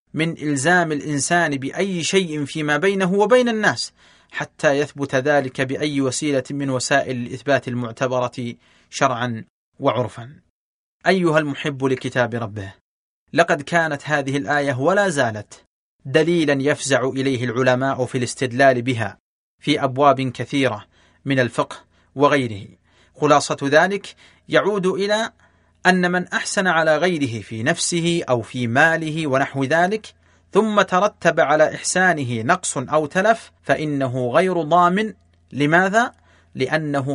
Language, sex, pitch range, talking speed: Arabic, male, 130-170 Hz, 115 wpm